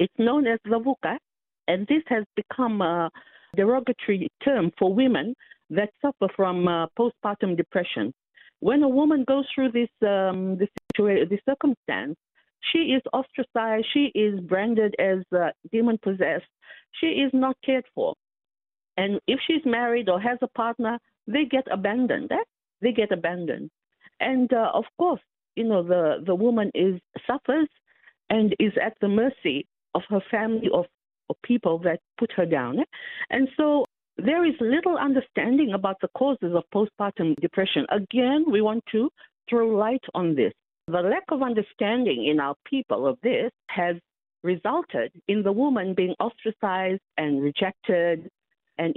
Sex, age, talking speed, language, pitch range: female, 50-69, 155 wpm, English, 190-260 Hz